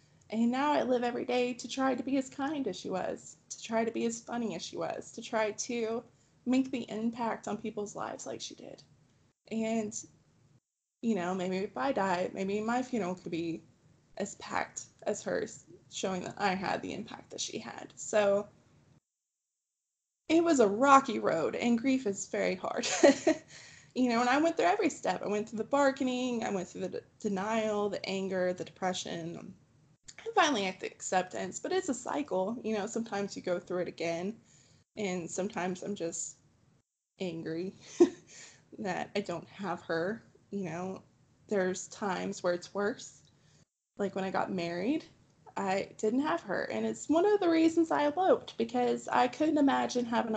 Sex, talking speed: female, 180 wpm